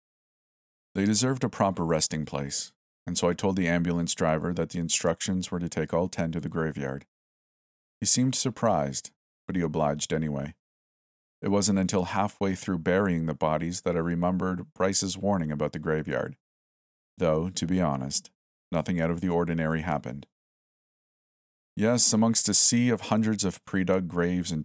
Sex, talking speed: male, 165 wpm